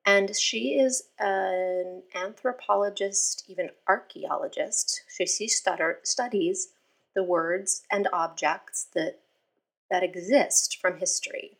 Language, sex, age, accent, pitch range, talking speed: English, female, 30-49, American, 175-260 Hz, 95 wpm